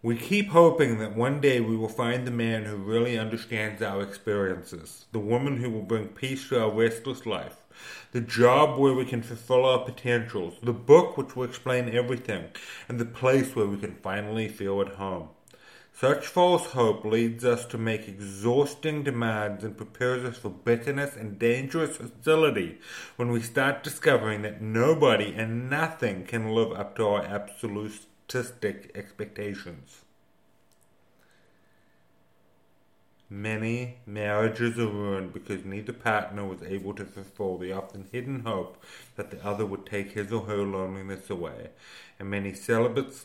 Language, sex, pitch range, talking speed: English, male, 100-120 Hz, 155 wpm